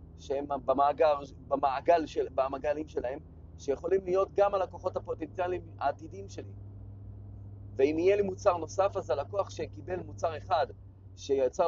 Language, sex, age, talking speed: Hebrew, male, 30-49, 115 wpm